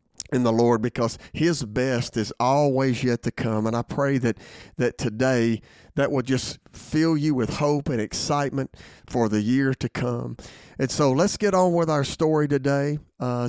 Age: 40-59